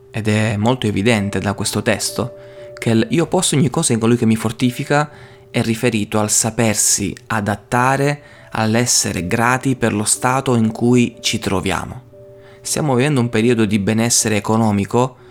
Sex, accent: male, native